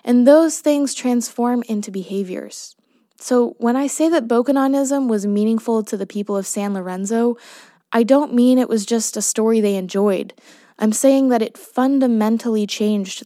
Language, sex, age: English, female, 20-39